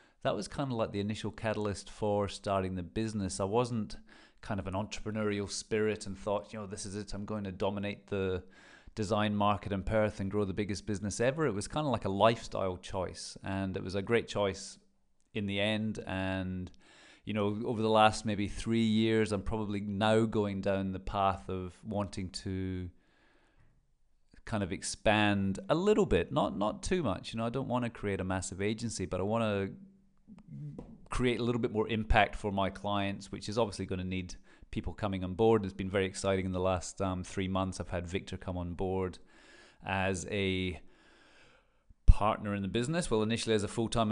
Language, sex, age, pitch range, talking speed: English, male, 30-49, 95-110 Hz, 200 wpm